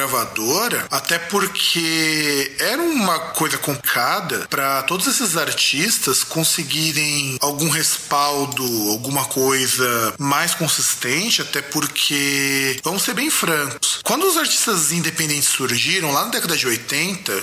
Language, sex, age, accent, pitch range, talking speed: Portuguese, male, 20-39, Brazilian, 140-190 Hz, 115 wpm